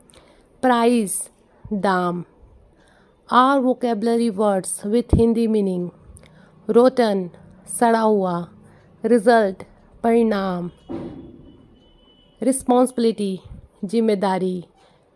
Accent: native